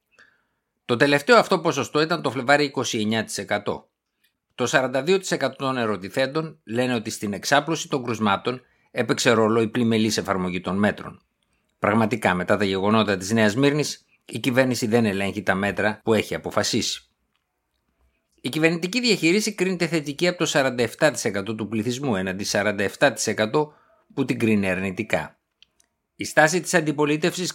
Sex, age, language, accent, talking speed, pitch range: male, 50-69, Greek, native, 135 wpm, 110-150 Hz